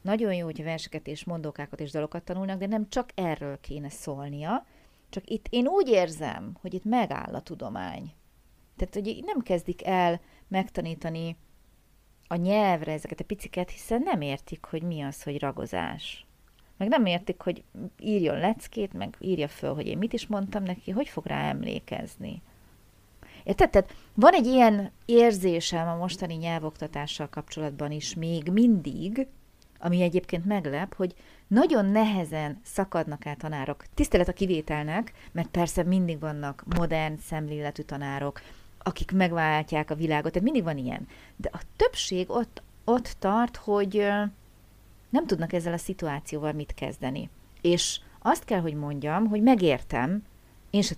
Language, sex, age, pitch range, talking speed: Hungarian, female, 30-49, 155-205 Hz, 150 wpm